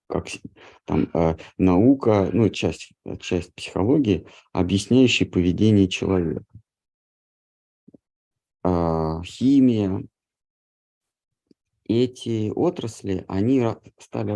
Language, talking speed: Russian, 70 wpm